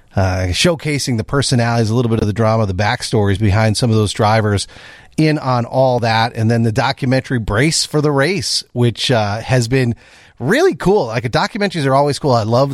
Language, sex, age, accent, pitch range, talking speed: English, male, 40-59, American, 110-135 Hz, 200 wpm